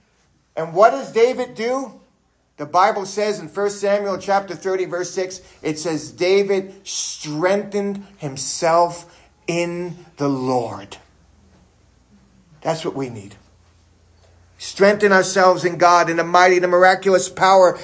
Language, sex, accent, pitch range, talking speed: English, male, American, 185-245 Hz, 125 wpm